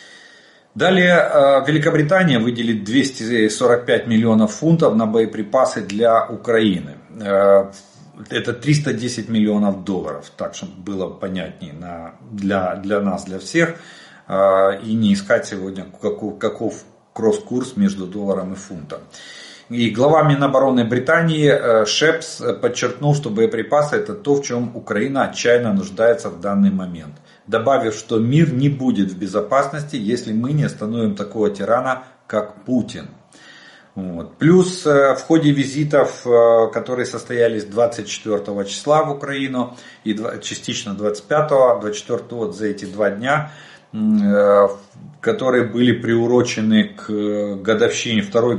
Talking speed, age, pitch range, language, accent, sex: 115 wpm, 40-59, 105-140 Hz, Russian, native, male